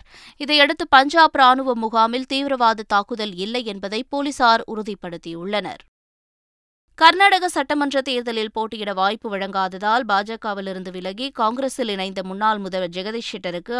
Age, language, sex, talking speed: 20-39, Tamil, female, 105 wpm